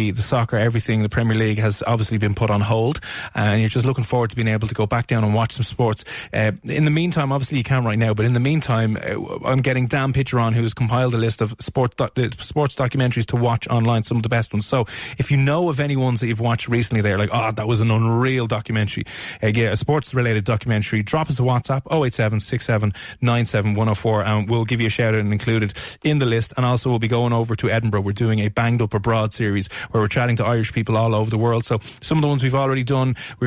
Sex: male